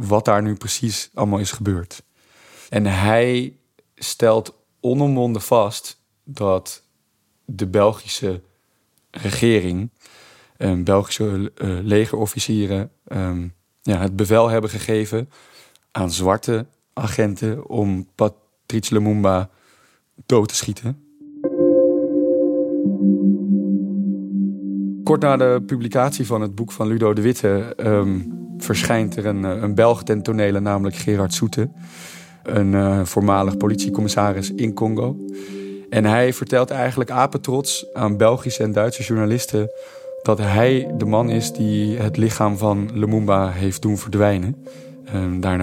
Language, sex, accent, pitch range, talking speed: Dutch, male, Dutch, 100-120 Hz, 110 wpm